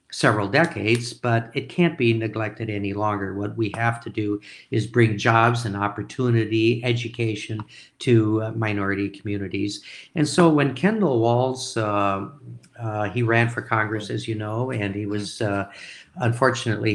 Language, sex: English, male